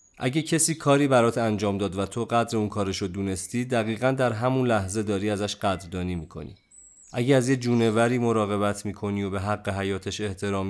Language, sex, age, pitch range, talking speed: Persian, male, 30-49, 95-115 Hz, 175 wpm